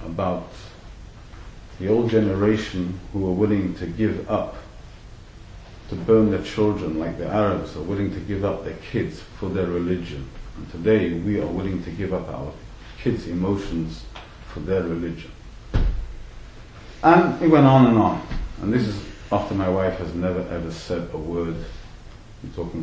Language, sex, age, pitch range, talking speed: English, male, 50-69, 85-110 Hz, 160 wpm